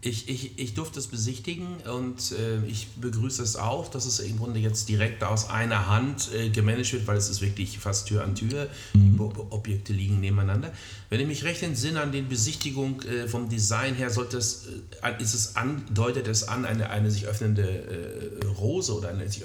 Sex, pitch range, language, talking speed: male, 100-115 Hz, German, 205 wpm